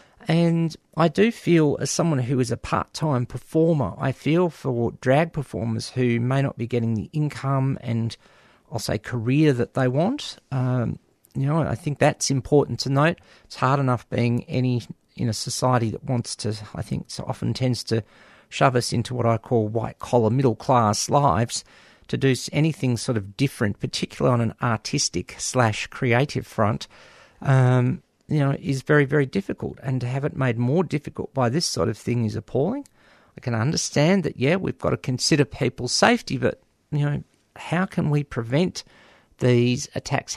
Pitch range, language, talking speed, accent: 120-150 Hz, English, 175 wpm, Australian